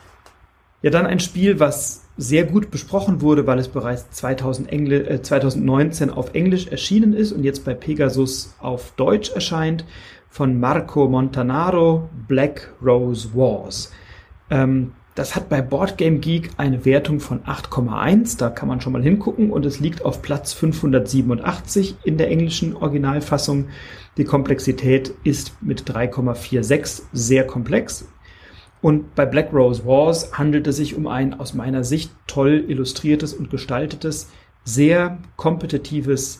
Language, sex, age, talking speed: German, male, 40-59, 140 wpm